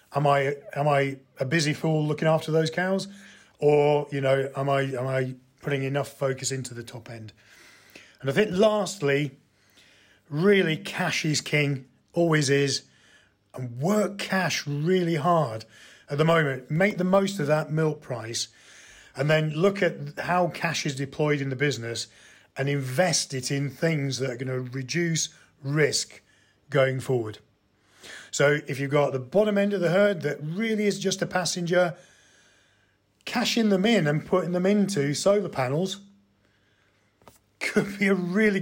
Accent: British